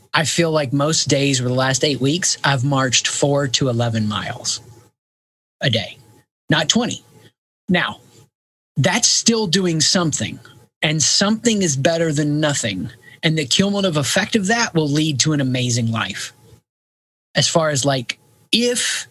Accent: American